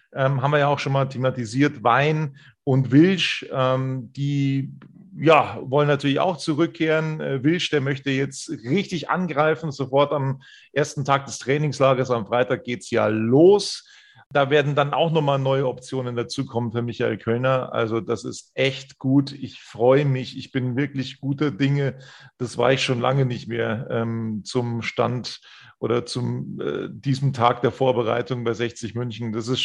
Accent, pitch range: German, 125-145 Hz